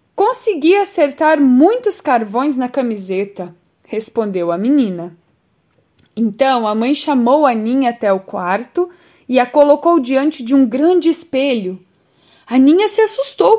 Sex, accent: female, Brazilian